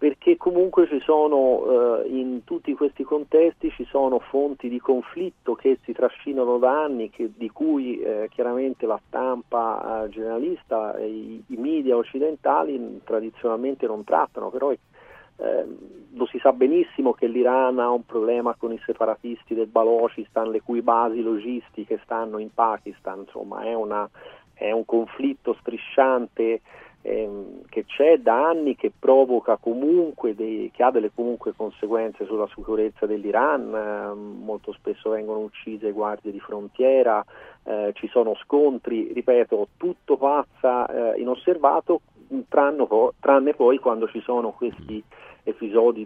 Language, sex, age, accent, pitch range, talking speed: Italian, male, 40-59, native, 110-145 Hz, 140 wpm